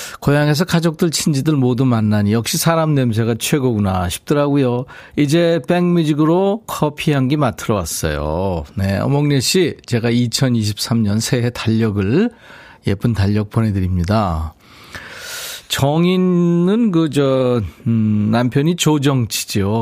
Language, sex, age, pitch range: Korean, male, 40-59, 105-160 Hz